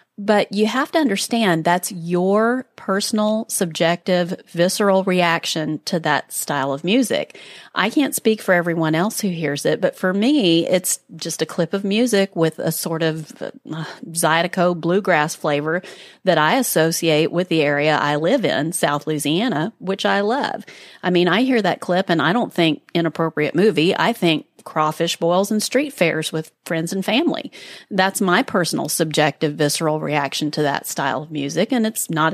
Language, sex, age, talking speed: English, female, 30-49, 175 wpm